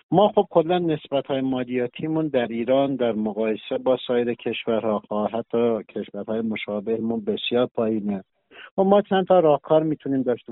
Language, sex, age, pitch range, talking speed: Persian, male, 50-69, 120-155 Hz, 145 wpm